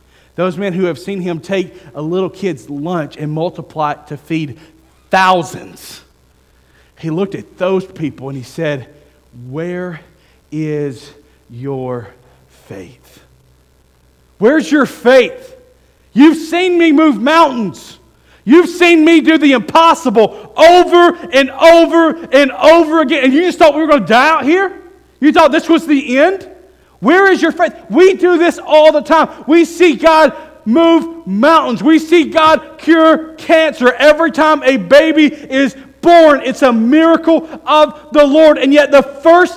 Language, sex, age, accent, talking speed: English, male, 40-59, American, 155 wpm